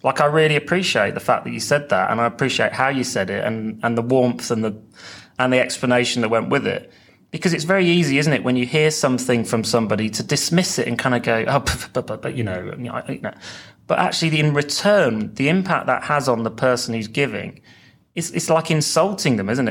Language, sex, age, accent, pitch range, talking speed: English, male, 30-49, British, 115-155 Hz, 240 wpm